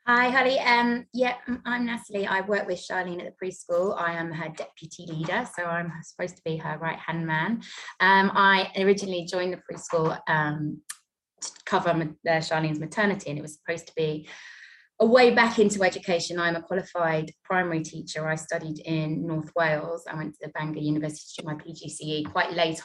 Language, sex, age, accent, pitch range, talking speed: English, female, 20-39, British, 155-180 Hz, 185 wpm